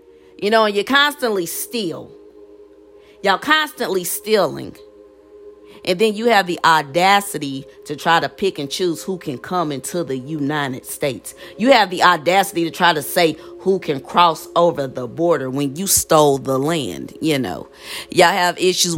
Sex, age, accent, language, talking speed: female, 40-59, American, English, 165 wpm